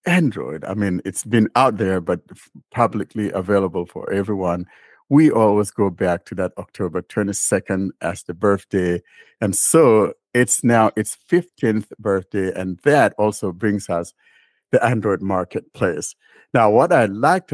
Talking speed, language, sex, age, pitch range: 145 wpm, English, male, 60-79, 95-120 Hz